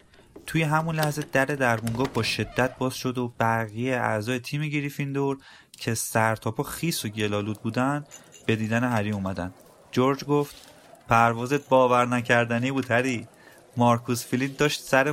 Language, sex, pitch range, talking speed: Persian, male, 110-135 Hz, 140 wpm